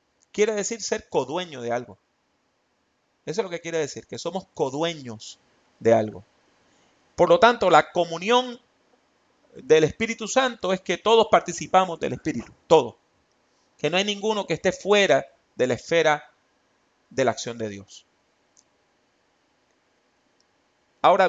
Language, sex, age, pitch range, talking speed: English, male, 30-49, 160-225 Hz, 135 wpm